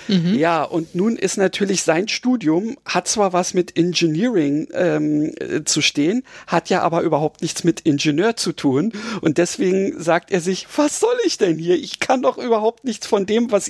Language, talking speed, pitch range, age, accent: German, 185 wpm, 160-205 Hz, 50-69, German